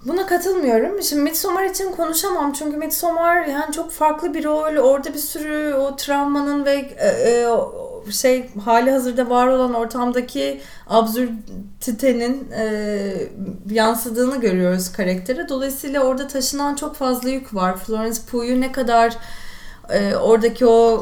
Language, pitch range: English, 205-270 Hz